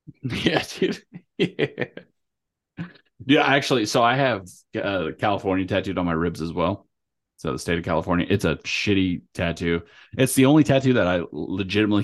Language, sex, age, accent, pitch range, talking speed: English, male, 30-49, American, 85-105 Hz, 160 wpm